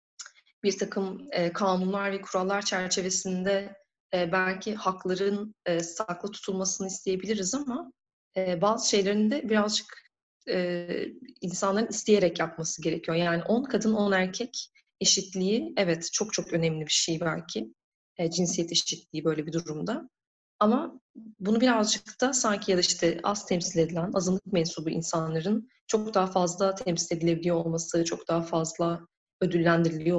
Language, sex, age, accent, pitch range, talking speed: Turkish, female, 30-49, native, 170-215 Hz, 125 wpm